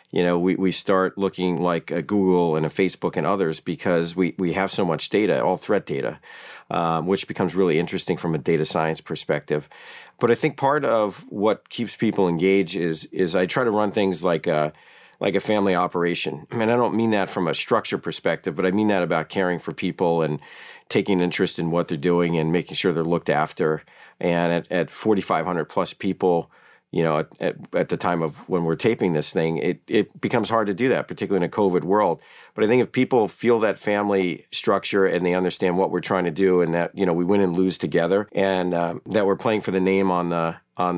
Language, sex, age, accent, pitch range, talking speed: English, male, 40-59, American, 85-100 Hz, 225 wpm